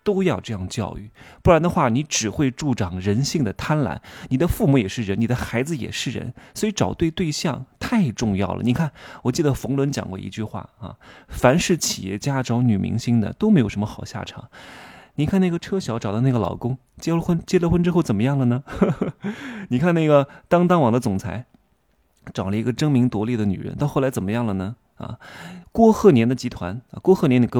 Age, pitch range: 20-39, 105-155 Hz